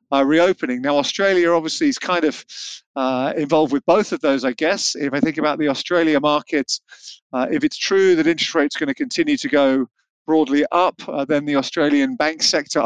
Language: English